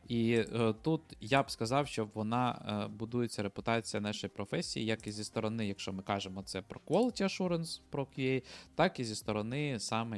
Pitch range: 105-135 Hz